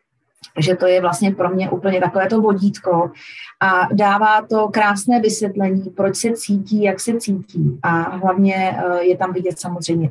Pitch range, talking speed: 180-215 Hz, 160 wpm